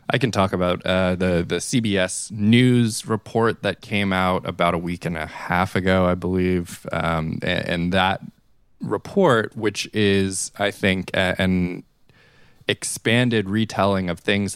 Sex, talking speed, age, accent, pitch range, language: male, 155 wpm, 20-39, American, 85-110 Hz, English